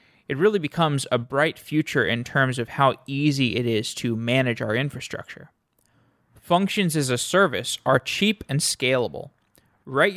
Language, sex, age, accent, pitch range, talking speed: English, male, 20-39, American, 130-165 Hz, 155 wpm